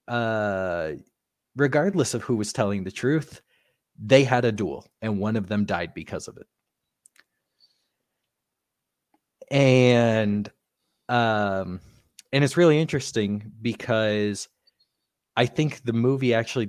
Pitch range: 95-120 Hz